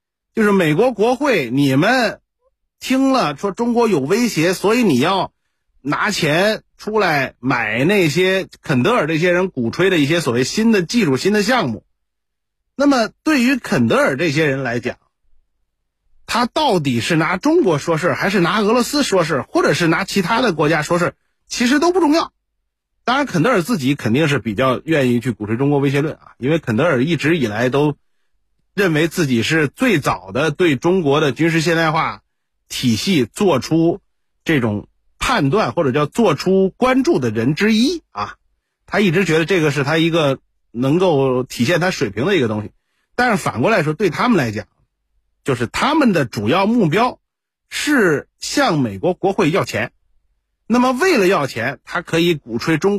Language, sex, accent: Chinese, male, native